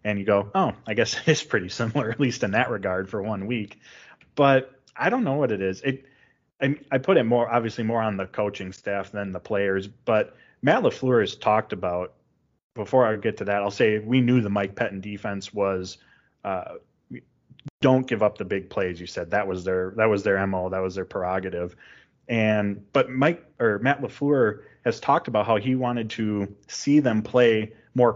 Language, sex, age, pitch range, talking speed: English, male, 20-39, 100-125 Hz, 200 wpm